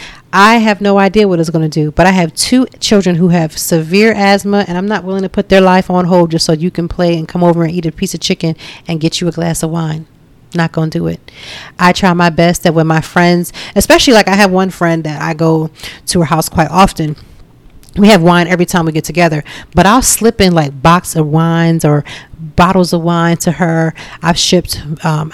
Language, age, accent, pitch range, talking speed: English, 40-59, American, 170-215 Hz, 240 wpm